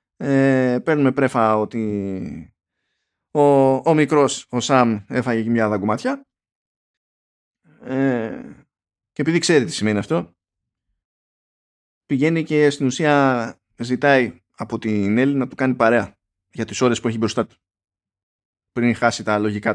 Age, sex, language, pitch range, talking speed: 20-39, male, Greek, 105-140 Hz, 130 wpm